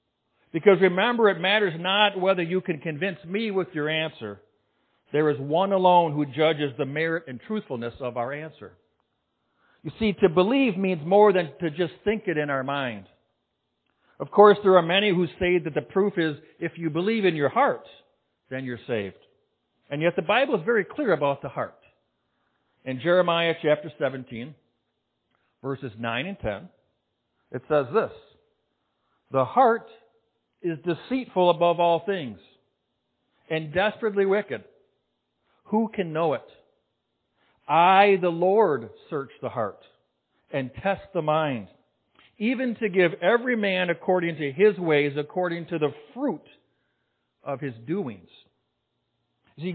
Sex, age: male, 60-79